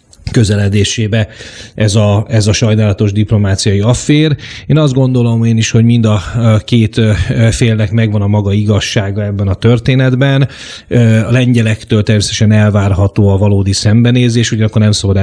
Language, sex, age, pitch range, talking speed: Hungarian, male, 30-49, 100-115 Hz, 140 wpm